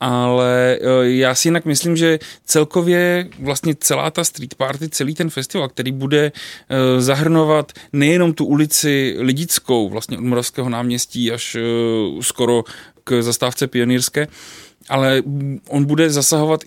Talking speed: 125 wpm